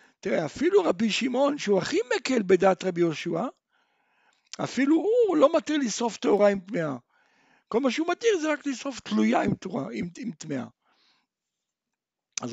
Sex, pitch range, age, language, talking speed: male, 175-265 Hz, 60-79, Hebrew, 140 wpm